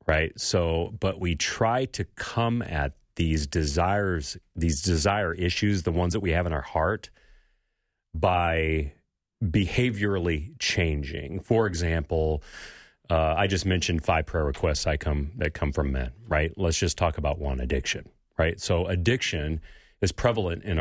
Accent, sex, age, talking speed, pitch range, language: American, male, 40-59, 150 wpm, 80-105 Hz, English